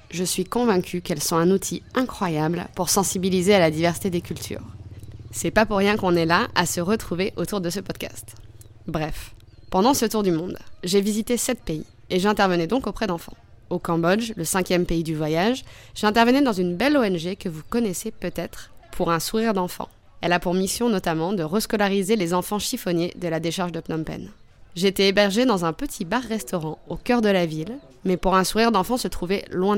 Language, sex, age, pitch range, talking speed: French, female, 20-39, 165-205 Hz, 200 wpm